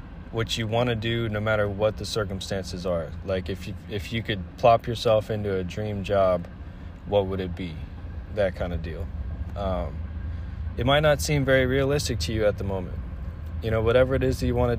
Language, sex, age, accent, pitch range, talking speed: English, male, 20-39, American, 85-110 Hz, 200 wpm